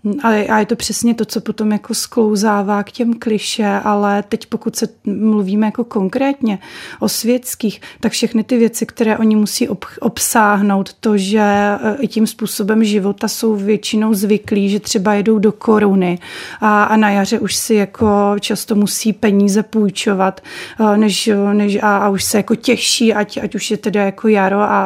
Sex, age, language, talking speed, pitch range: female, 30-49, Czech, 165 wpm, 205-220 Hz